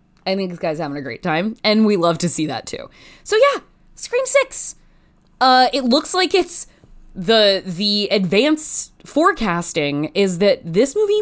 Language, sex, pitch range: English, female, 210-315 Hz